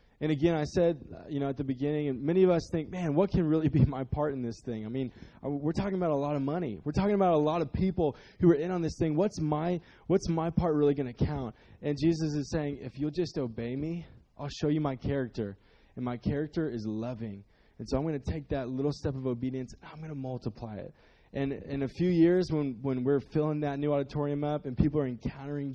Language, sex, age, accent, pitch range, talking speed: English, male, 20-39, American, 135-170 Hz, 250 wpm